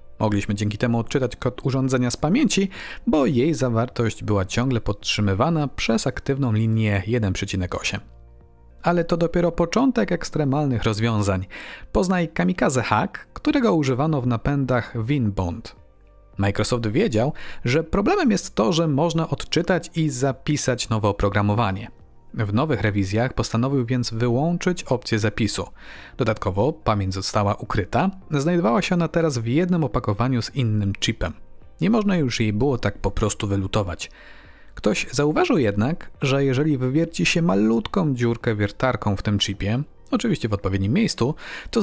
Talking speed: 135 wpm